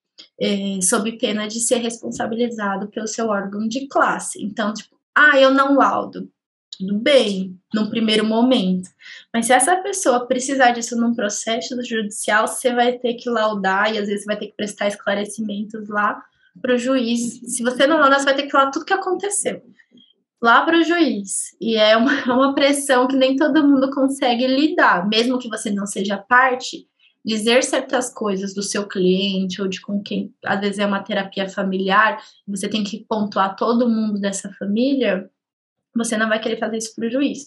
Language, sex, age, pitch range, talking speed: Portuguese, female, 10-29, 210-260 Hz, 180 wpm